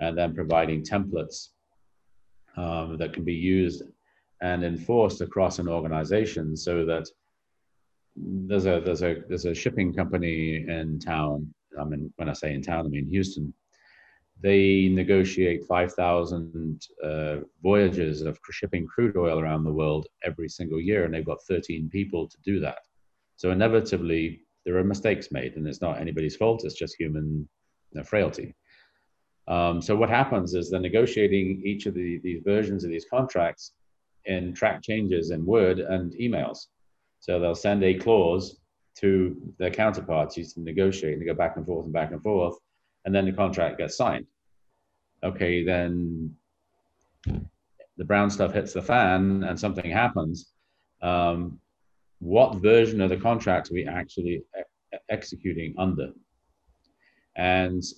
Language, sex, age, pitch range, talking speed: English, male, 40-59, 80-95 Hz, 155 wpm